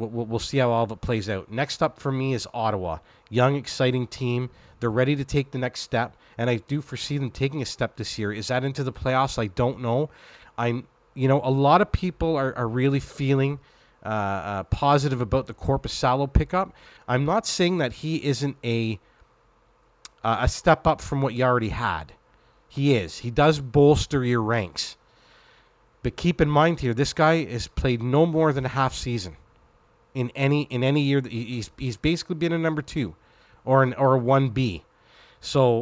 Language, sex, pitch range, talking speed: English, male, 115-140 Hz, 200 wpm